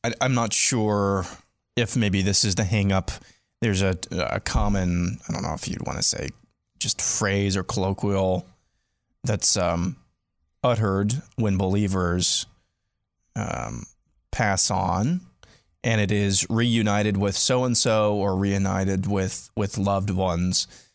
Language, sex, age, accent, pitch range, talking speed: English, male, 20-39, American, 95-115 Hz, 140 wpm